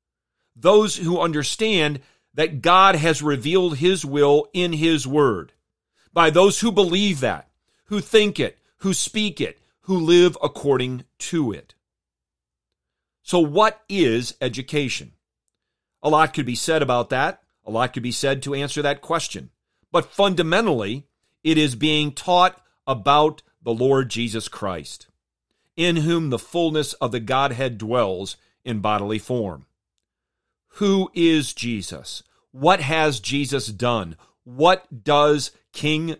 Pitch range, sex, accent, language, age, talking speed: 120-165 Hz, male, American, English, 40-59, 135 wpm